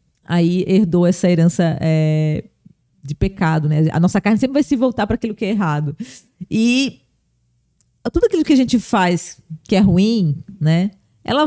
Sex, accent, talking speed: female, Brazilian, 165 wpm